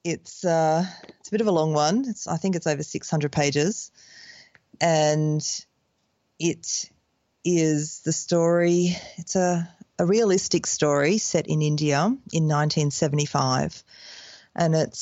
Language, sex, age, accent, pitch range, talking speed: English, female, 30-49, Australian, 145-170 Hz, 120 wpm